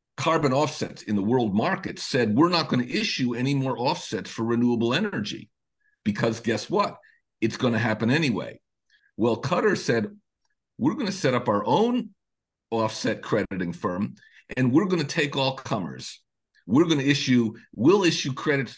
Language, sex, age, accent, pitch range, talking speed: English, male, 50-69, American, 110-145 Hz, 170 wpm